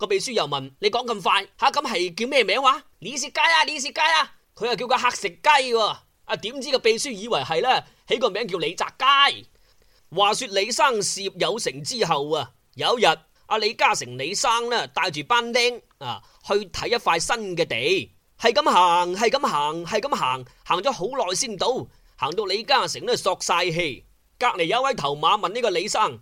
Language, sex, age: Chinese, male, 20-39